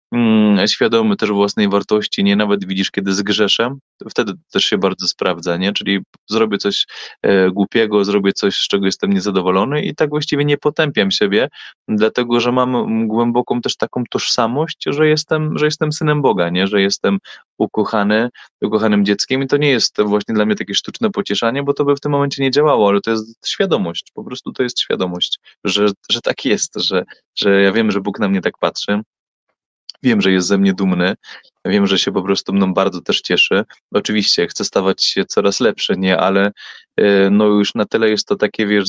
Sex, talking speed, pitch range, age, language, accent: male, 190 wpm, 100-125 Hz, 20-39, Polish, native